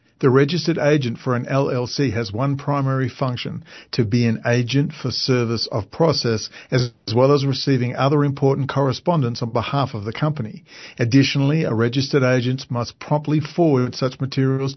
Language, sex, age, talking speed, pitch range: English, male, 50-69, 160 wpm, 120-150 Hz